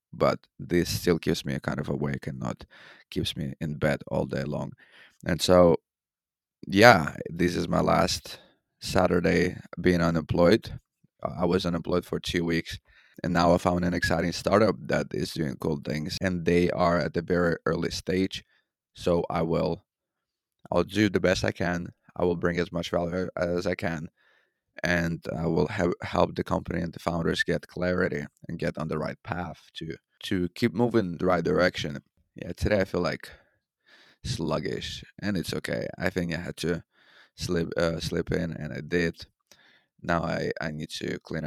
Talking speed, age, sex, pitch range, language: 180 wpm, 30-49, male, 85-90 Hz, English